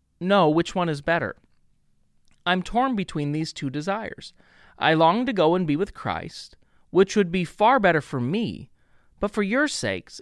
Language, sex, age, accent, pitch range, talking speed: English, male, 30-49, American, 140-200 Hz, 175 wpm